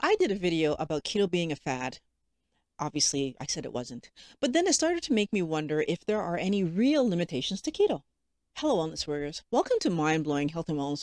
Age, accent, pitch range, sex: 40-59, American, 150-220 Hz, female